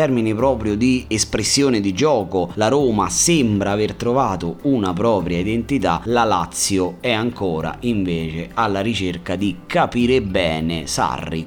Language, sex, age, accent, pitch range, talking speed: Italian, male, 30-49, native, 95-125 Hz, 130 wpm